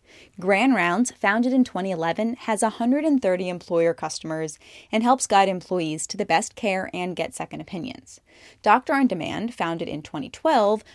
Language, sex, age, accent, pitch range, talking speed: English, female, 10-29, American, 175-225 Hz, 150 wpm